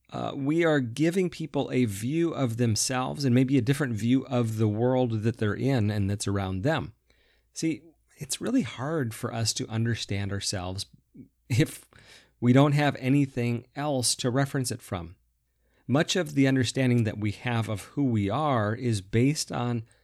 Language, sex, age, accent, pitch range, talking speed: English, male, 30-49, American, 100-130 Hz, 170 wpm